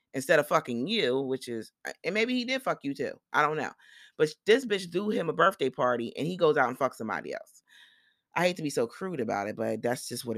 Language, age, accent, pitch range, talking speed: English, 30-49, American, 135-190 Hz, 255 wpm